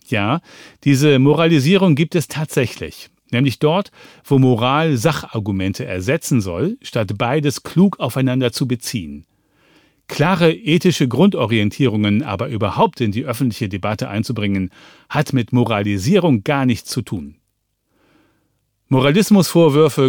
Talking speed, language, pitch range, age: 110 wpm, German, 110-150 Hz, 40-59